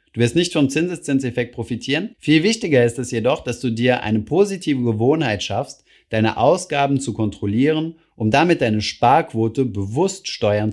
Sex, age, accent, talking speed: male, 30-49, German, 155 wpm